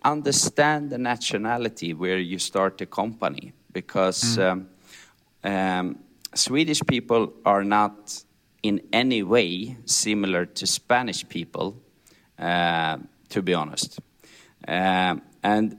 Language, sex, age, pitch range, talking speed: English, male, 40-59, 95-115 Hz, 105 wpm